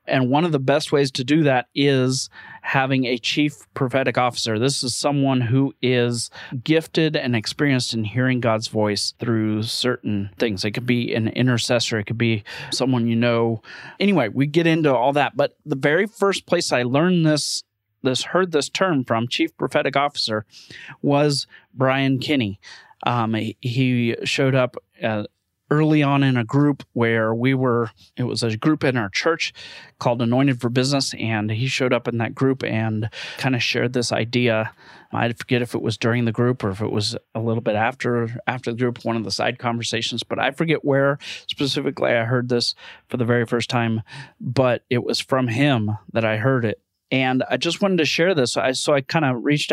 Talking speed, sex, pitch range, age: 195 wpm, male, 115-145 Hz, 30-49